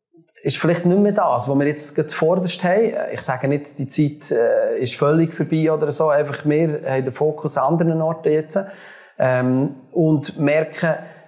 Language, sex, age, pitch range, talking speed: German, male, 30-49, 130-160 Hz, 165 wpm